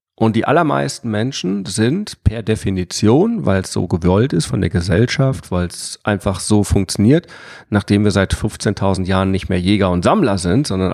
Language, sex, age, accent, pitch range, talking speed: German, male, 40-59, German, 95-120 Hz, 175 wpm